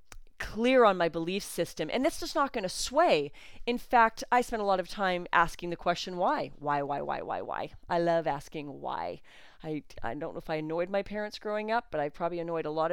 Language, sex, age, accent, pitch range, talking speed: English, female, 40-59, American, 155-205 Hz, 230 wpm